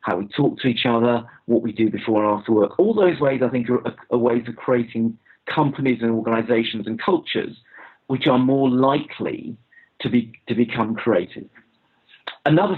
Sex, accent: male, British